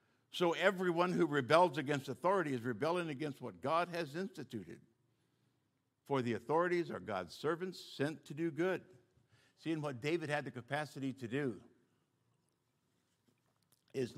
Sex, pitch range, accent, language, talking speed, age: male, 115-140 Hz, American, English, 140 wpm, 60-79